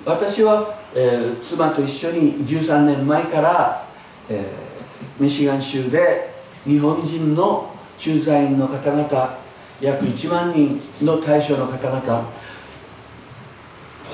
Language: Japanese